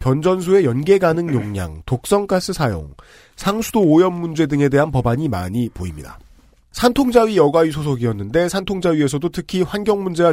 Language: Korean